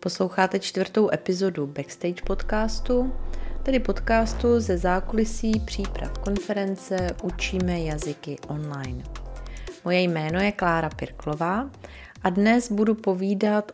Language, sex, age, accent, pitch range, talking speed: Czech, female, 30-49, native, 160-205 Hz, 100 wpm